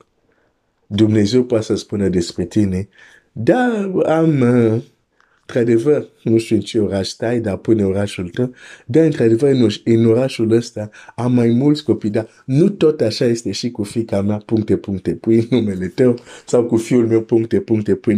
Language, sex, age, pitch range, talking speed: Romanian, male, 50-69, 95-115 Hz, 160 wpm